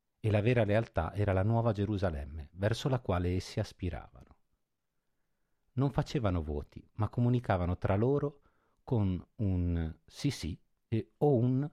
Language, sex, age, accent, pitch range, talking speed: Italian, male, 50-69, native, 85-115 Hz, 135 wpm